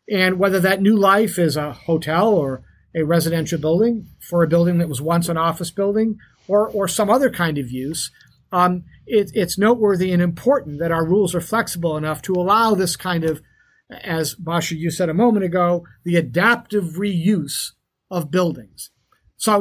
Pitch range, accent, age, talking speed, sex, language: 160-205 Hz, American, 50-69, 180 wpm, male, English